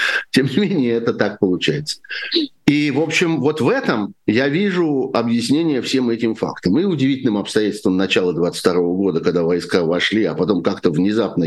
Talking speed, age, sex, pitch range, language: 165 wpm, 50-69, male, 90-130 Hz, Russian